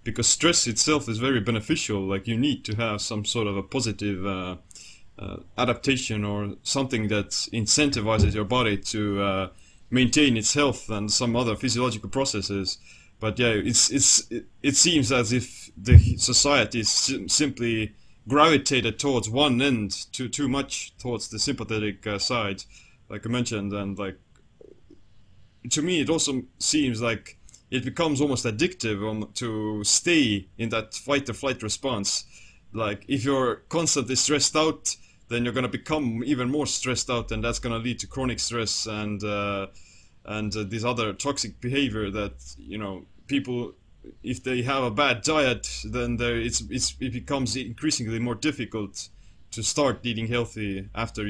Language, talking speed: English, 155 wpm